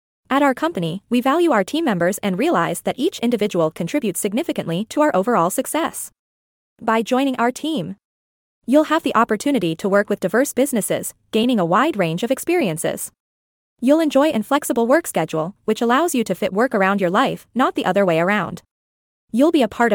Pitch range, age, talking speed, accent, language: 195-275 Hz, 20-39, 185 wpm, American, English